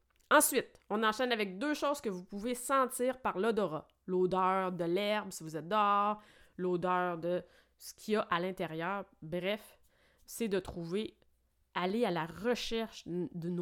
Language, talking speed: French, 160 wpm